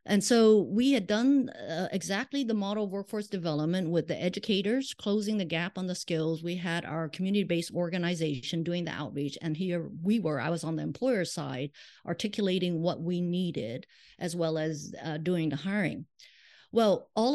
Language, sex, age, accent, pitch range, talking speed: English, female, 50-69, American, 165-220 Hz, 185 wpm